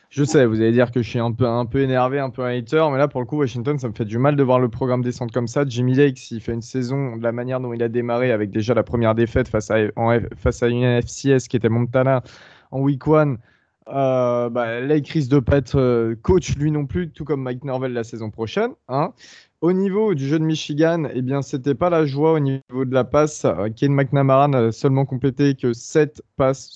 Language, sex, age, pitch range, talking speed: French, male, 20-39, 120-145 Hz, 250 wpm